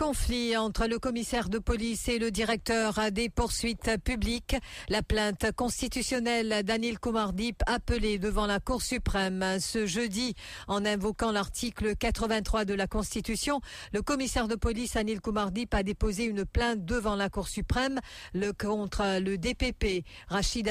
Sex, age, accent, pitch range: female, 50-69, French, 200-230 Hz